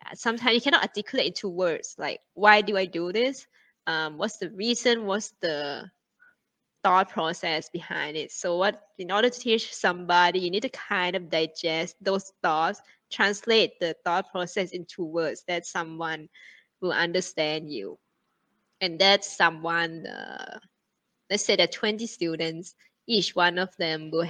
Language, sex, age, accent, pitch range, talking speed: English, female, 20-39, Malaysian, 170-210 Hz, 155 wpm